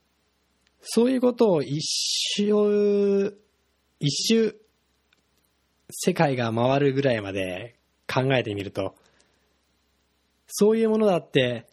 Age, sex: 20-39, male